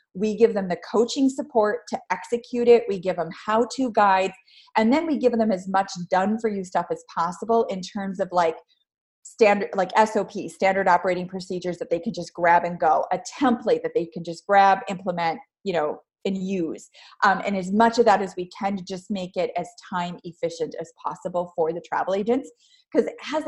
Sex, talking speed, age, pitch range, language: female, 200 wpm, 30-49, 180-245 Hz, English